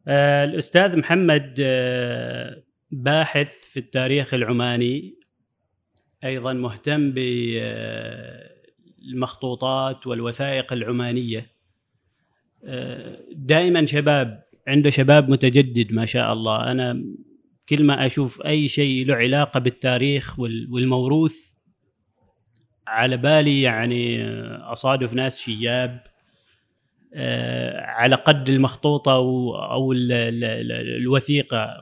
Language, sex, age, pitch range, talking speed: Arabic, male, 30-49, 120-140 Hz, 75 wpm